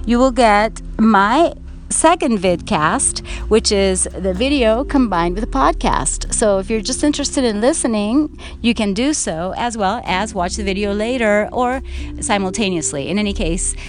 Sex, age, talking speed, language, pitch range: female, 30-49, 160 wpm, English, 175-235 Hz